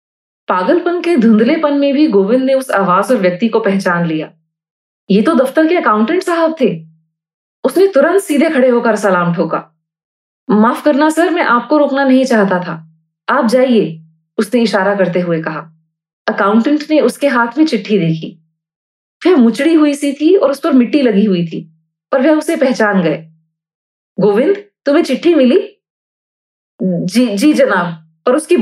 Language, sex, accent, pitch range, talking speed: Hindi, female, native, 175-280 Hz, 160 wpm